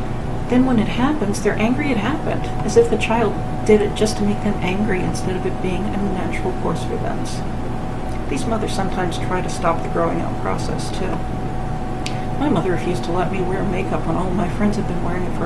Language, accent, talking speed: English, American, 215 wpm